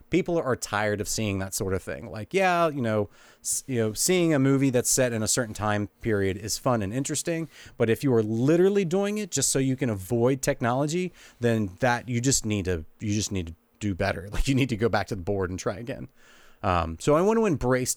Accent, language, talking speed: American, English, 245 wpm